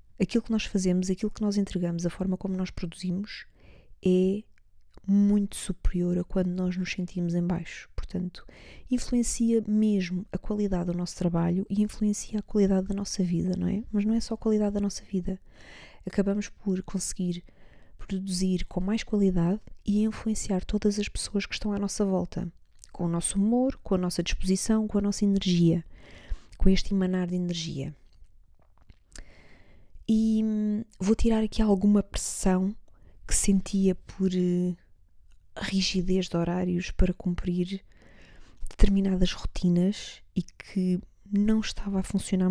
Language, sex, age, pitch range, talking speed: Portuguese, female, 20-39, 180-205 Hz, 150 wpm